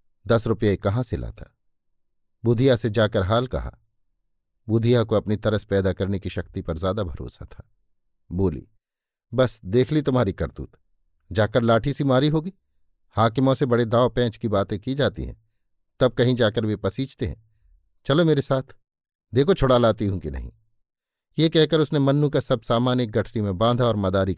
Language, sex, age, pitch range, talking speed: Hindi, male, 50-69, 95-125 Hz, 175 wpm